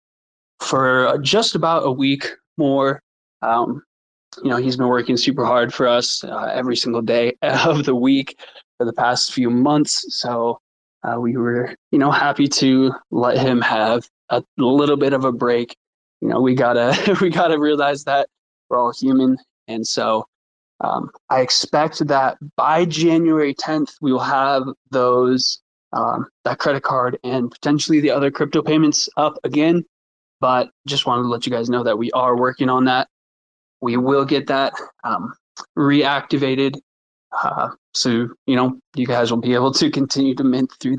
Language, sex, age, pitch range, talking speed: English, male, 20-39, 125-145 Hz, 170 wpm